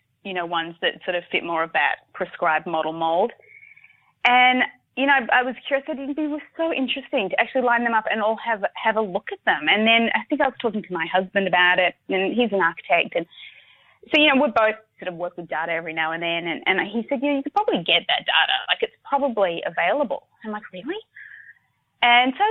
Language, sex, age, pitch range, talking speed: English, female, 20-39, 180-255 Hz, 240 wpm